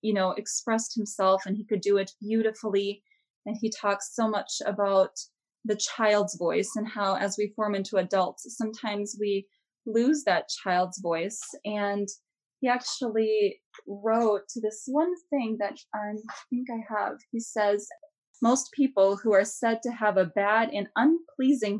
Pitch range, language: 200-240 Hz, English